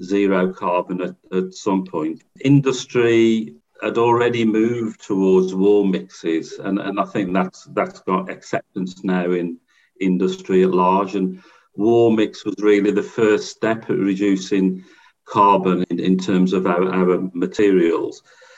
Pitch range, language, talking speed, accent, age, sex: 95-105 Hz, English, 140 wpm, British, 50-69, male